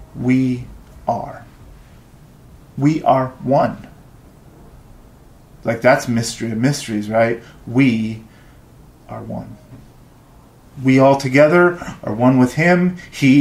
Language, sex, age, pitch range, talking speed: English, male, 30-49, 115-155 Hz, 100 wpm